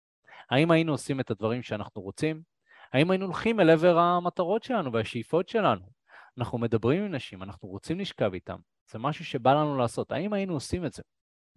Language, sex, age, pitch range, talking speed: Hebrew, male, 20-39, 105-150 Hz, 175 wpm